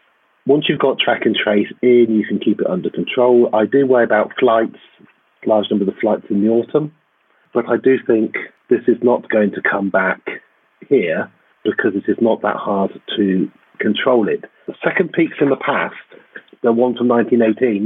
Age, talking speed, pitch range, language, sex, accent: 40-59, 190 wpm, 110-140 Hz, English, male, British